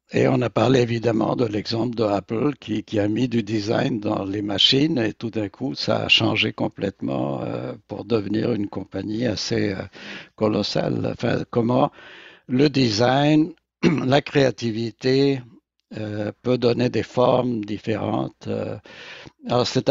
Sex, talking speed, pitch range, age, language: male, 140 wpm, 105-135 Hz, 60-79, French